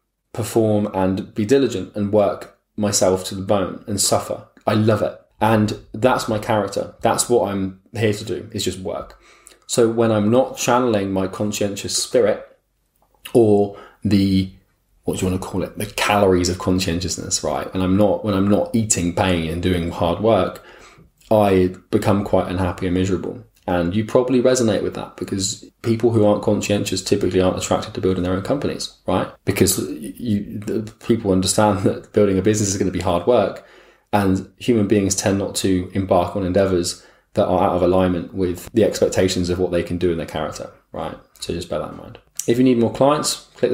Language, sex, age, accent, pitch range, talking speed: English, male, 20-39, British, 90-110 Hz, 190 wpm